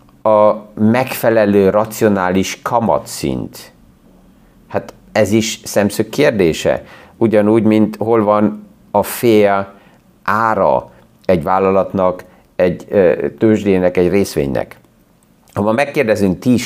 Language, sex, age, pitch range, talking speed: Hungarian, male, 50-69, 95-115 Hz, 95 wpm